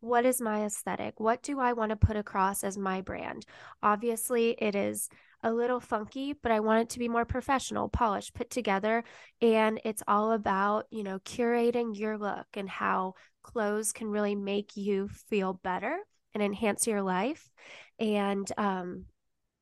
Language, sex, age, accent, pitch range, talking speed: English, female, 10-29, American, 205-245 Hz, 170 wpm